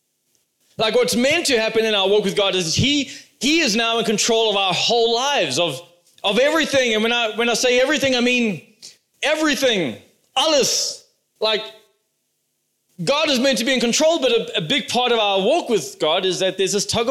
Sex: male